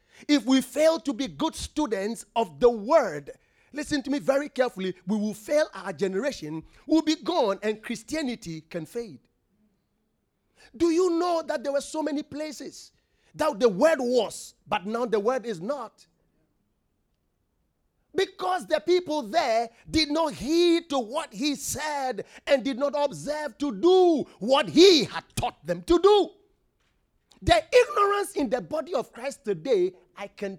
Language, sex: English, male